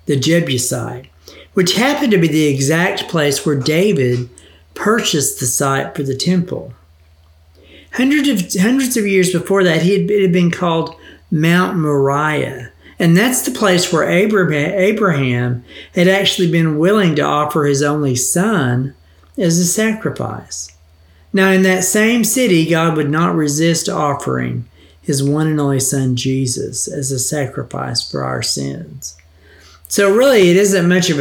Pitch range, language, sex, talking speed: 125-175 Hz, English, male, 150 wpm